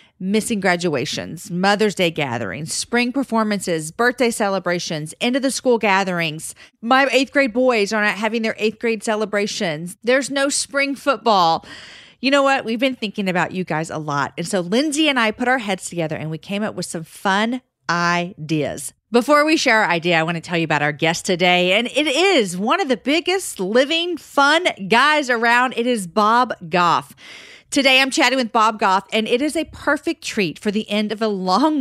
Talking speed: 195 wpm